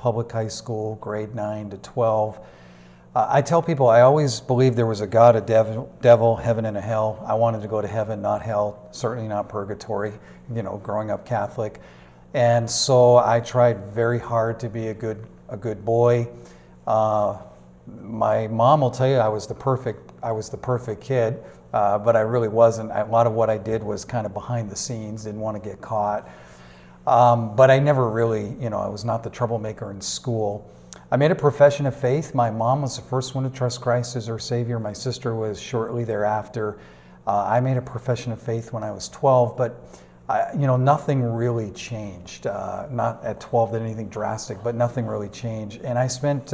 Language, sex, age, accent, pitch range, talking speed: English, male, 40-59, American, 105-120 Hz, 205 wpm